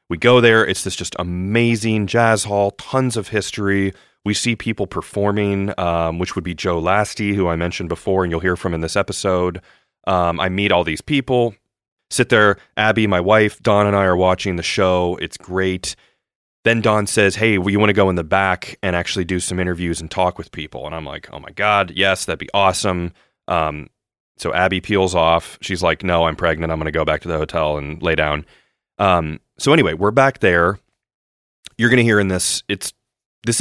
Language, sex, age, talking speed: English, male, 30-49, 210 wpm